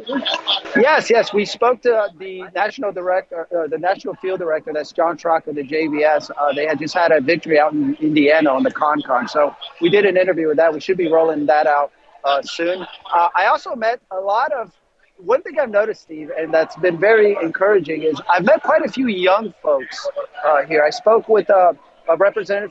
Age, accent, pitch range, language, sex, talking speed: 40-59, American, 160-205 Hz, English, male, 210 wpm